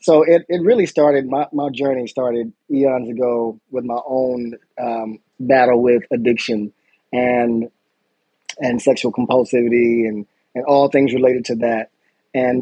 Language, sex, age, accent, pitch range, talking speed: English, male, 20-39, American, 120-135 Hz, 145 wpm